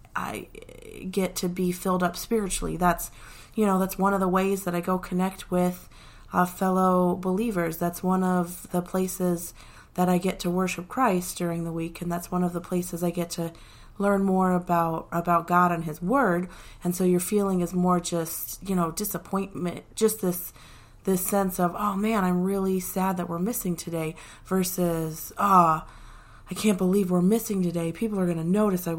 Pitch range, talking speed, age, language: 165-185 Hz, 190 wpm, 30-49, English